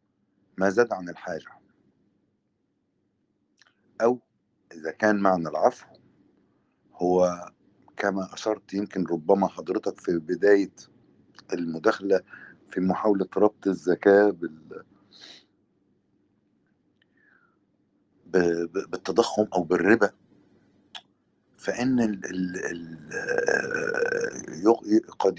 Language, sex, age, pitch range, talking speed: Arabic, male, 50-69, 90-115 Hz, 70 wpm